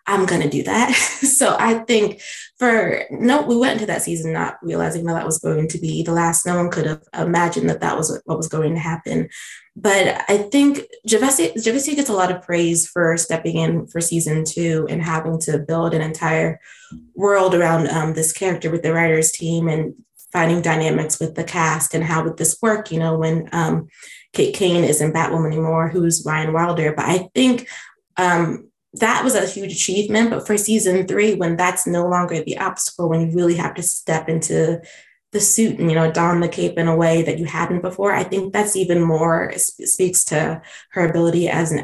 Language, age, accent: English, 20-39, American